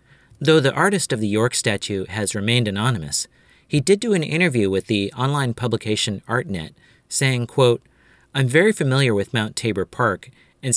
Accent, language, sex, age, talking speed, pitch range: American, English, male, 40-59, 165 wpm, 105-135 Hz